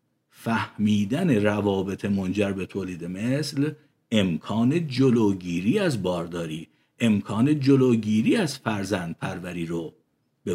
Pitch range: 110-145 Hz